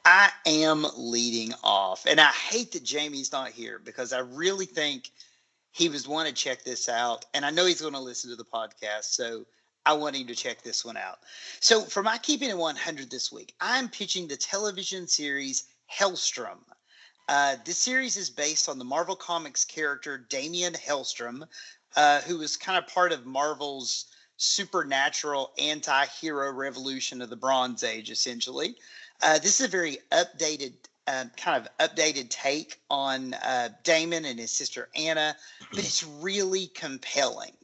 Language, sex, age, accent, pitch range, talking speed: English, male, 30-49, American, 130-170 Hz, 165 wpm